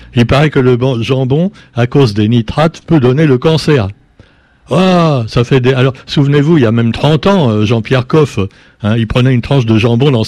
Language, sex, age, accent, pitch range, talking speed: French, male, 60-79, French, 115-155 Hz, 210 wpm